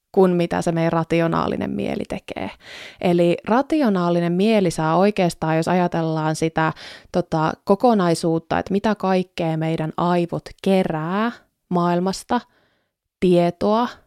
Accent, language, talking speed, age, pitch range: native, Finnish, 105 wpm, 20-39, 170-215 Hz